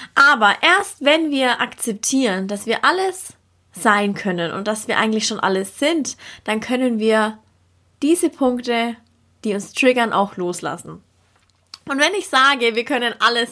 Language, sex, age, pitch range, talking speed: German, female, 20-39, 210-265 Hz, 150 wpm